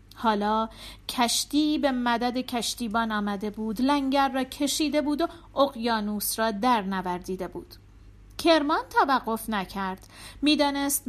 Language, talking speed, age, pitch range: Persian, 115 wpm, 40-59, 205-280 Hz